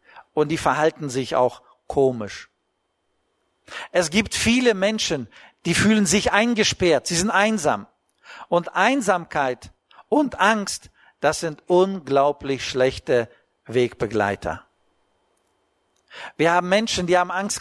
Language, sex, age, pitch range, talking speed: German, male, 50-69, 125-185 Hz, 110 wpm